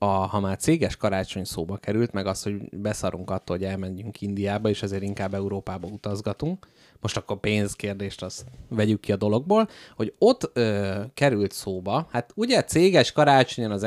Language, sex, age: Hungarian, male, 30-49